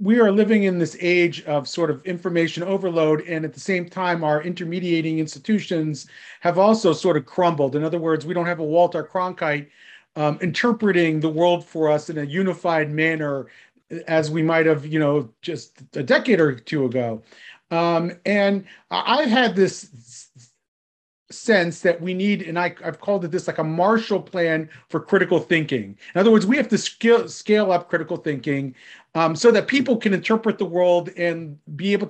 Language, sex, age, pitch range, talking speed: English, male, 40-59, 160-200 Hz, 185 wpm